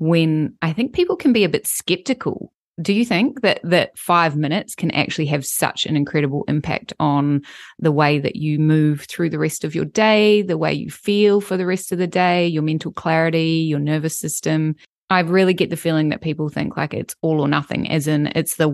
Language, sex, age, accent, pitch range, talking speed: English, female, 20-39, Australian, 155-200 Hz, 220 wpm